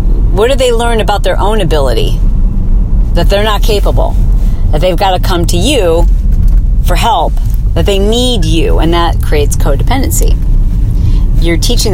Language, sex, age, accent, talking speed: English, female, 40-59, American, 155 wpm